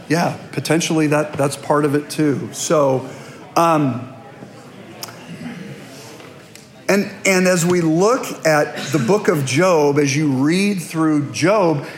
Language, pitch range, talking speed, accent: English, 140-180 Hz, 125 wpm, American